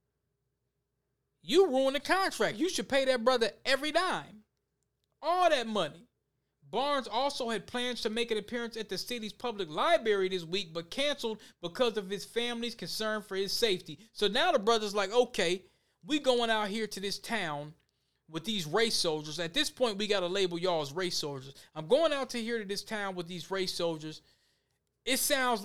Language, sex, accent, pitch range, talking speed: English, male, American, 170-230 Hz, 190 wpm